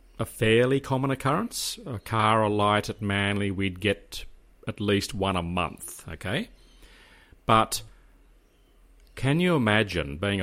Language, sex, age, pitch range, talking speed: English, male, 40-59, 90-115 Hz, 130 wpm